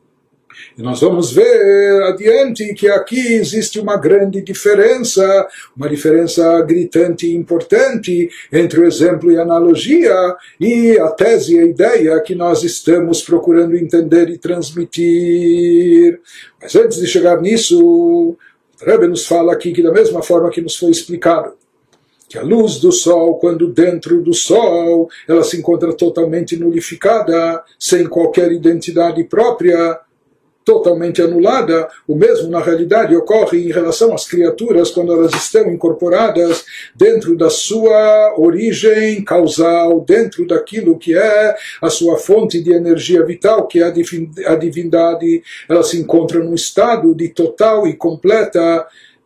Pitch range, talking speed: 165-215 Hz, 140 wpm